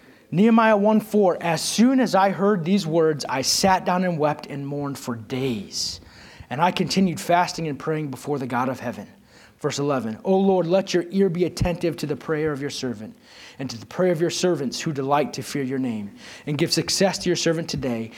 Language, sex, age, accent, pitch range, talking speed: English, male, 30-49, American, 135-185 Hz, 210 wpm